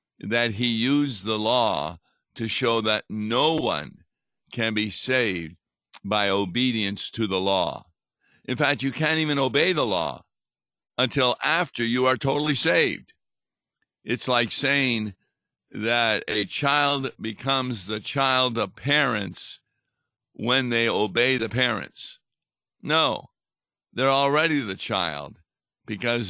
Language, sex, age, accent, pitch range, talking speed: English, male, 60-79, American, 105-130 Hz, 125 wpm